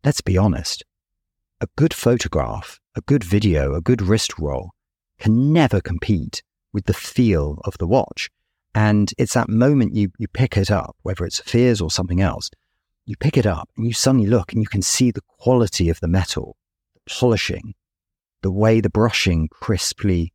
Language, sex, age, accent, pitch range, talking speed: English, male, 40-59, British, 85-110 Hz, 180 wpm